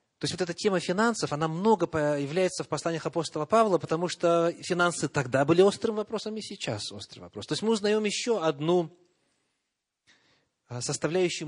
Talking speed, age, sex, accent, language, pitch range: 160 wpm, 30-49, male, native, Russian, 110-160 Hz